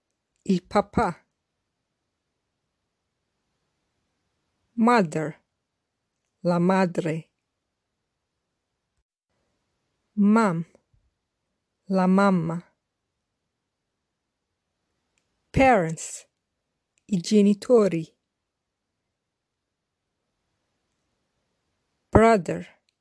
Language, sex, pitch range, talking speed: English, female, 165-205 Hz, 30 wpm